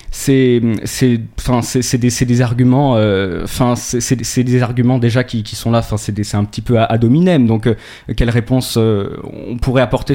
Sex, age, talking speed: male, 20-39, 225 wpm